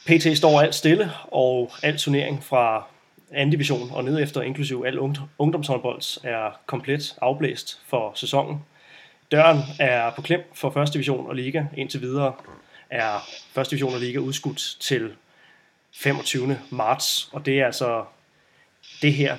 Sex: male